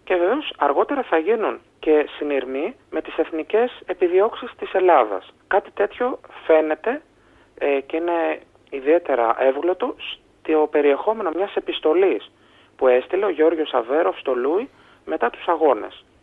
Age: 30-49